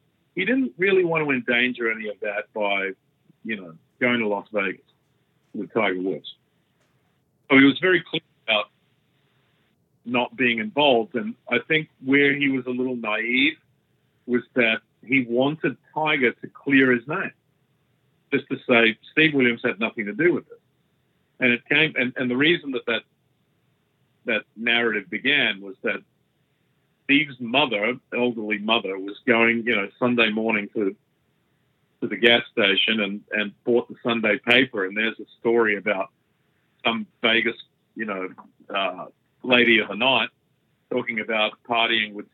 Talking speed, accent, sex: 155 wpm, American, male